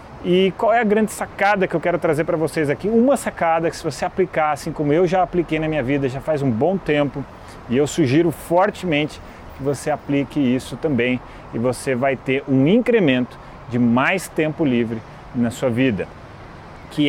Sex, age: male, 30-49